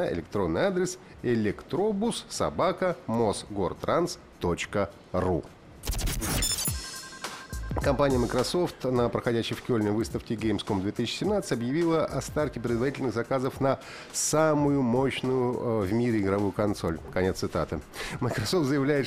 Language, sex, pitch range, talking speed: Russian, male, 105-135 Hz, 95 wpm